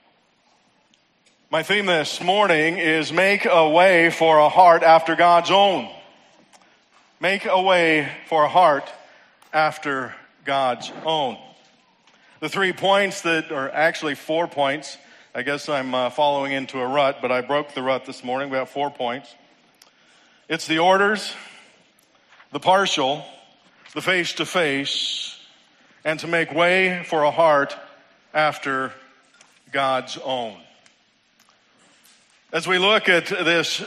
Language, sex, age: English, male, 40-59